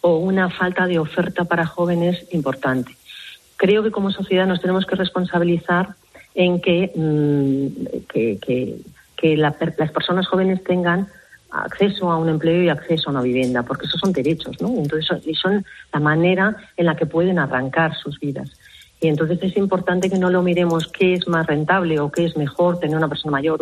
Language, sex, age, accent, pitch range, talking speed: Spanish, female, 40-59, Spanish, 145-175 Hz, 185 wpm